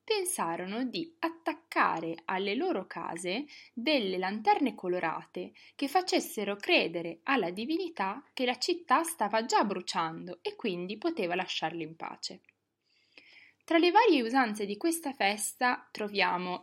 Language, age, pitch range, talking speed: Italian, 20-39, 185-275 Hz, 125 wpm